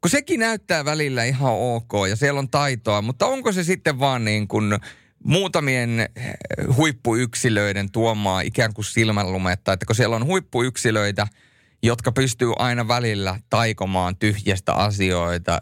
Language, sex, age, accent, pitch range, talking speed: Finnish, male, 30-49, native, 100-135 Hz, 135 wpm